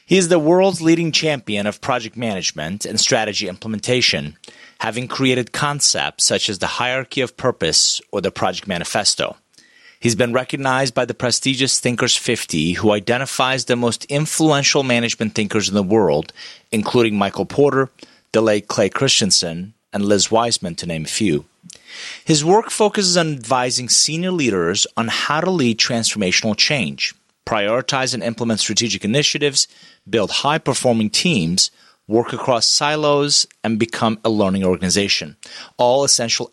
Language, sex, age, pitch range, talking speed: English, male, 30-49, 110-145 Hz, 145 wpm